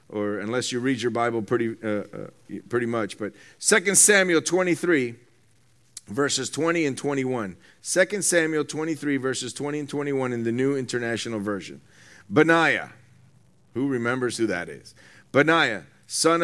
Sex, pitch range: male, 130-200 Hz